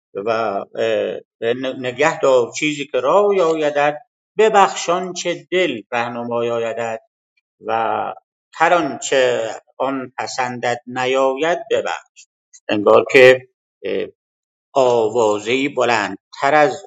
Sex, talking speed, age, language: male, 90 wpm, 50-69, Persian